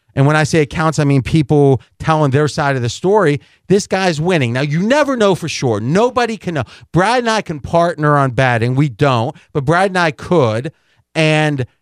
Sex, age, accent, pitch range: male, 40-59, American, 135-180 Hz